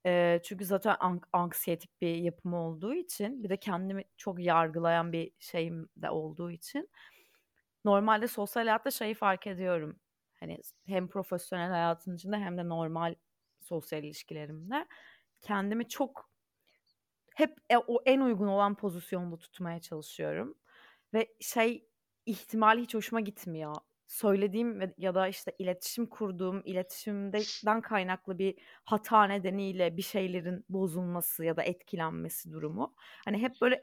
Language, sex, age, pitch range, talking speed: Turkish, female, 30-49, 175-220 Hz, 125 wpm